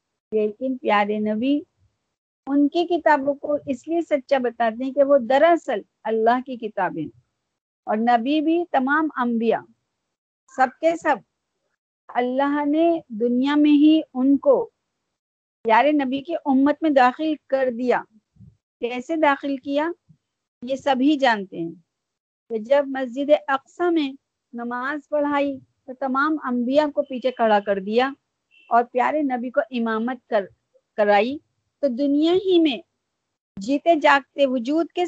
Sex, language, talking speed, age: female, Urdu, 135 wpm, 50-69